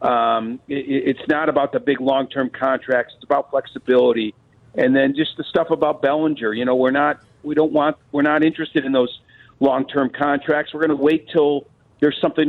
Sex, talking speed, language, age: male, 190 wpm, English, 50-69